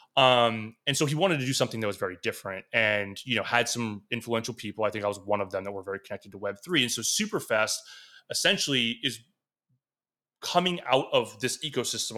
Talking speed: 205 wpm